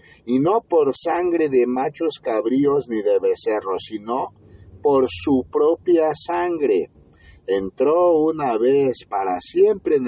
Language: Spanish